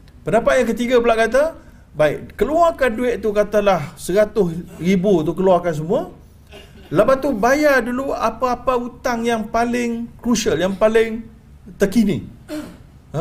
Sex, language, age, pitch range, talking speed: male, Malayalam, 50-69, 125-200 Hz, 125 wpm